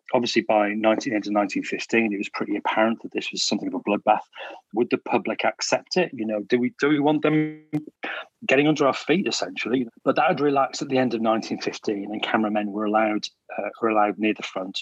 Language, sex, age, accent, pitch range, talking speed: English, male, 40-59, British, 105-130 Hz, 220 wpm